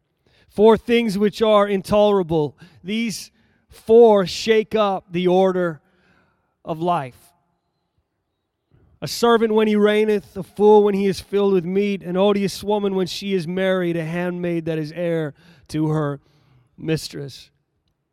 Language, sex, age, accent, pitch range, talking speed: English, male, 30-49, American, 160-195 Hz, 135 wpm